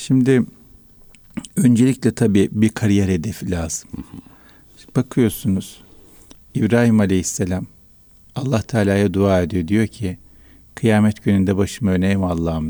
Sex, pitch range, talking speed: male, 95-115 Hz, 100 wpm